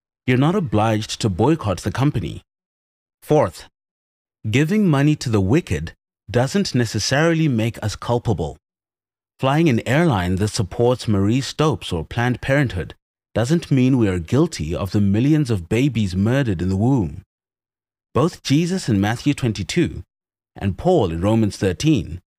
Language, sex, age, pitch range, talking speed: English, male, 30-49, 100-140 Hz, 140 wpm